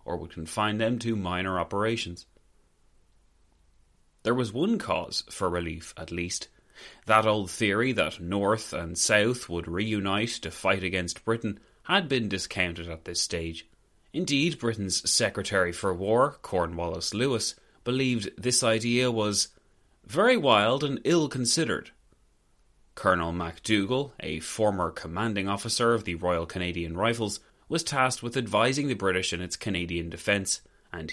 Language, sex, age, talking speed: English, male, 30-49, 140 wpm